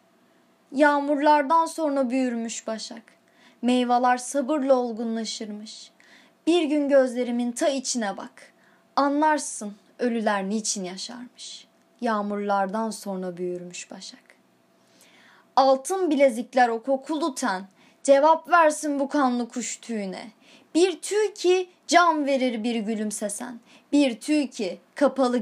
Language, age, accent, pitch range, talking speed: Turkish, 20-39, native, 220-290 Hz, 105 wpm